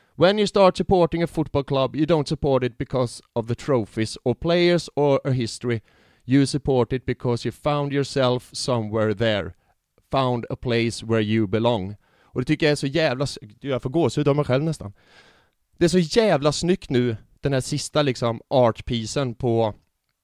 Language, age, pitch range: English, 30-49, 120-155 Hz